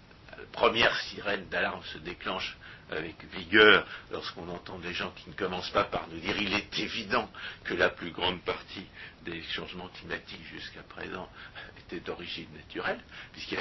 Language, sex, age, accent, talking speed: French, male, 60-79, French, 160 wpm